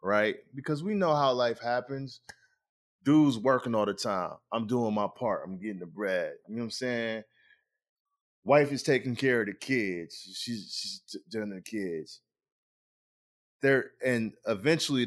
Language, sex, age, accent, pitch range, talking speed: English, male, 20-39, American, 105-130 Hz, 155 wpm